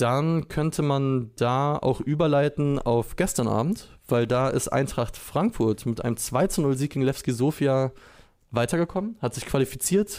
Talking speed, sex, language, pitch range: 140 wpm, male, German, 115-150 Hz